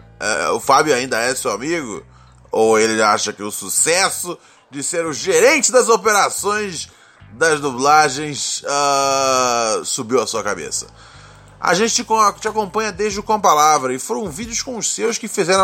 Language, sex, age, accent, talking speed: Portuguese, male, 20-39, Brazilian, 155 wpm